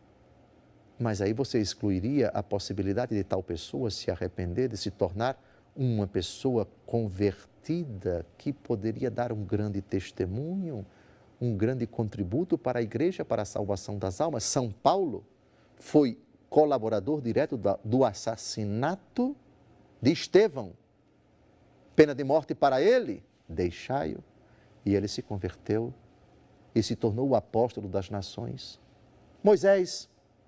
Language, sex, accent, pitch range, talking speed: Portuguese, male, Brazilian, 105-130 Hz, 120 wpm